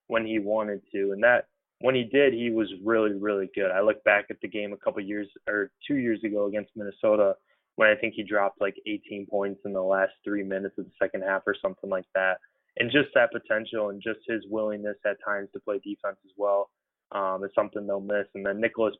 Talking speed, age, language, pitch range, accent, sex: 230 wpm, 20-39, English, 100-110 Hz, American, male